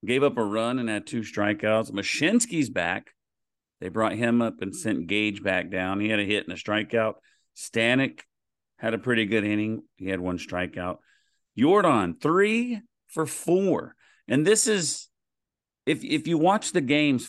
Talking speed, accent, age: 170 wpm, American, 50-69